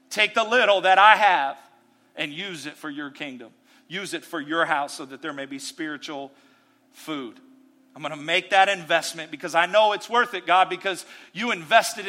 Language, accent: English, American